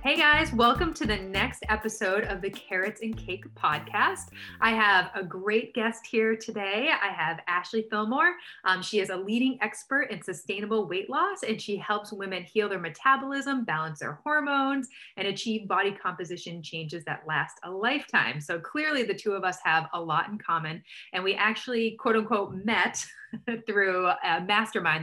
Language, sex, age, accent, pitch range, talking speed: English, female, 30-49, American, 170-220 Hz, 175 wpm